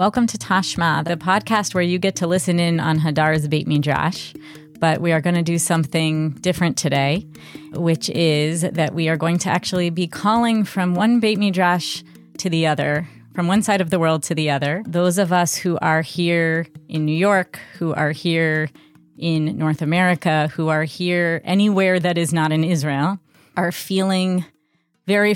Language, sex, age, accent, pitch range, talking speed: English, female, 30-49, American, 155-185 Hz, 180 wpm